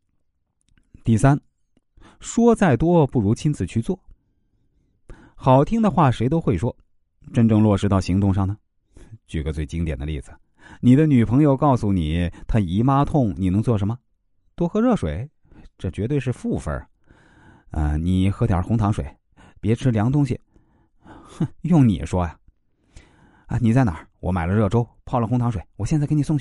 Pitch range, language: 90-135 Hz, Chinese